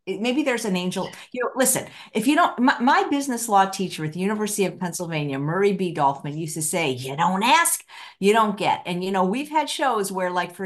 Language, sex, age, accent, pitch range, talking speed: English, female, 50-69, American, 160-215 Hz, 220 wpm